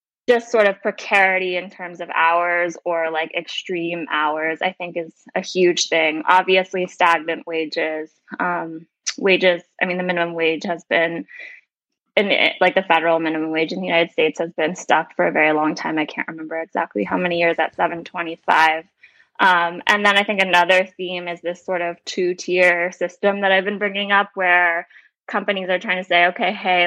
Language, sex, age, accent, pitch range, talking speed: English, female, 20-39, American, 165-185 Hz, 190 wpm